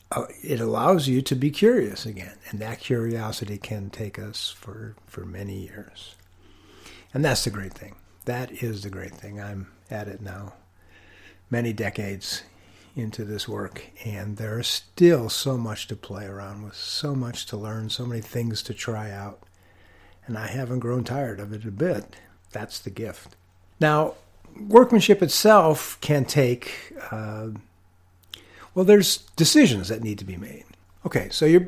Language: English